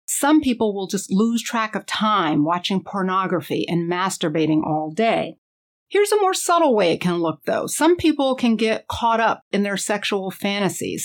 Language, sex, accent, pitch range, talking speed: English, female, American, 175-240 Hz, 180 wpm